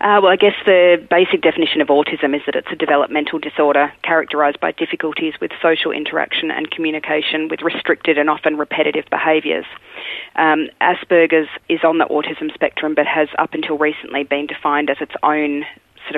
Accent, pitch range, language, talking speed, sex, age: Australian, 150-160 Hz, English, 175 wpm, female, 30-49